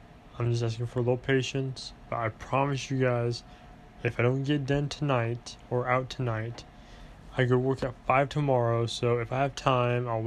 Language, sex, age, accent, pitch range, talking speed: English, male, 20-39, American, 120-135 Hz, 195 wpm